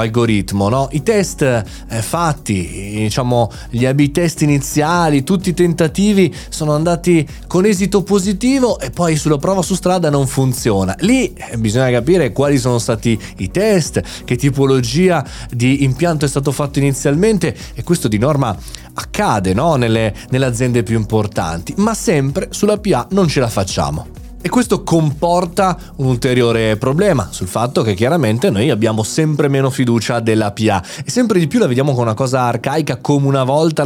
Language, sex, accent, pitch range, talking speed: Italian, male, native, 115-155 Hz, 160 wpm